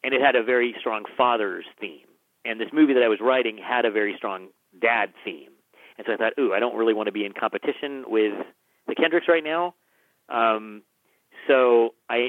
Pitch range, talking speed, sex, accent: 110-140 Hz, 205 wpm, male, American